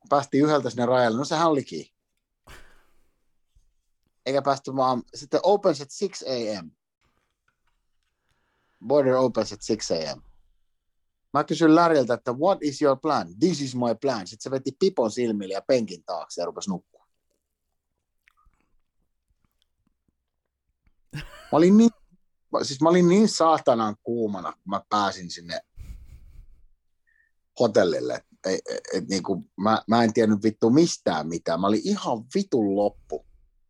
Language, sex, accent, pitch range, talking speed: Finnish, male, native, 110-165 Hz, 130 wpm